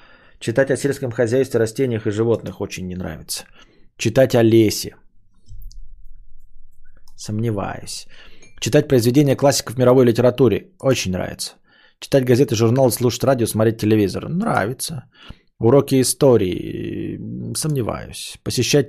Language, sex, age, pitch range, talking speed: Bulgarian, male, 20-39, 105-130 Hz, 105 wpm